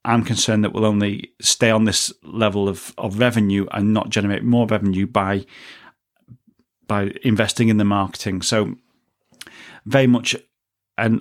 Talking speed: 145 wpm